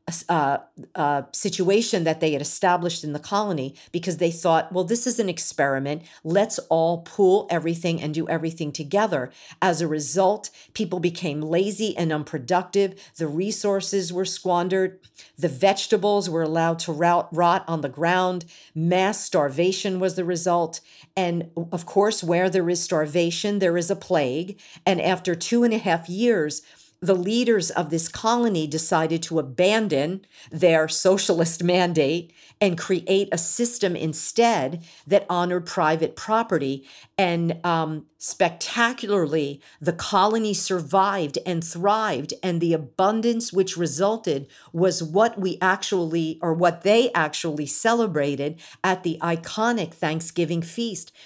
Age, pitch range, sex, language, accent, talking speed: 50-69, 165-200 Hz, female, English, American, 135 wpm